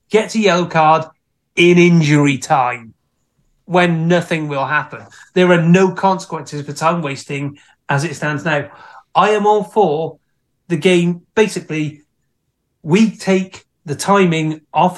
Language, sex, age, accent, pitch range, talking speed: English, male, 30-49, British, 150-185 Hz, 135 wpm